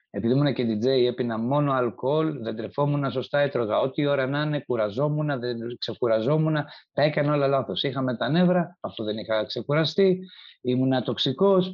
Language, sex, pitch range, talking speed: Greek, male, 130-195 Hz, 170 wpm